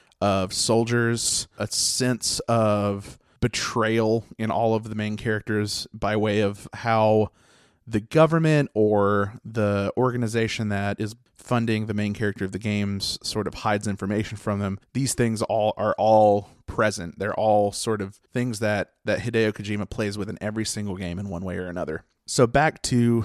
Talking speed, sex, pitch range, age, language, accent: 170 wpm, male, 105-125 Hz, 30-49, English, American